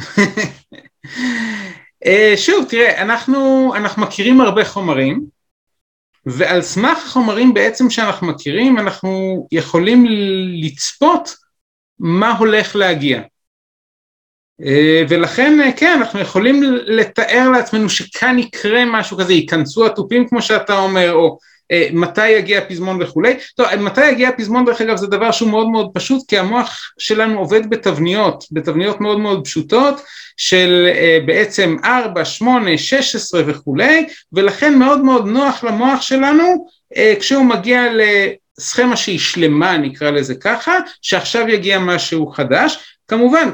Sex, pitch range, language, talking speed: male, 175-250 Hz, Hebrew, 120 wpm